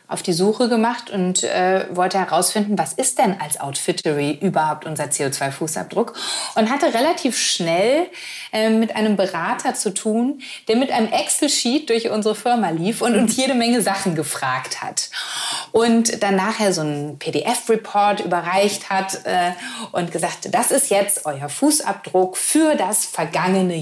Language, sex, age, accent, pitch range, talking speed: German, female, 30-49, German, 180-240 Hz, 150 wpm